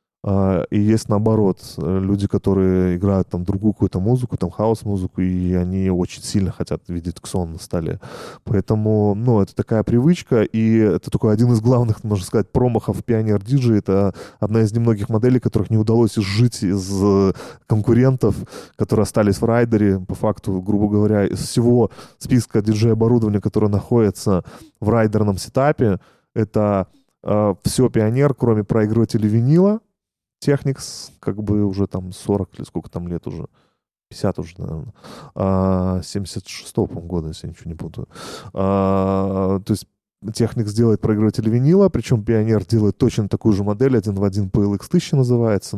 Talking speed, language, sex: 150 wpm, Russian, male